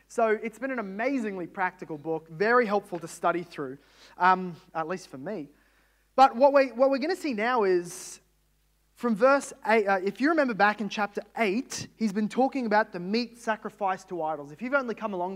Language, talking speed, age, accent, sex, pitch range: English, 190 wpm, 20-39, Australian, male, 195-240 Hz